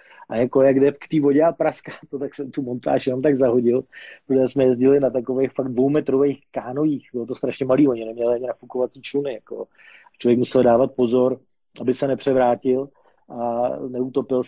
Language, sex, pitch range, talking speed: Slovak, male, 130-155 Hz, 185 wpm